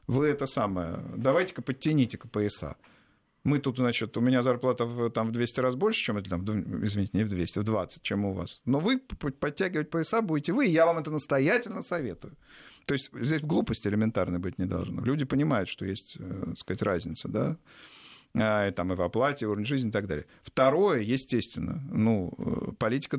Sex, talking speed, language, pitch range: male, 195 wpm, Russian, 105-135 Hz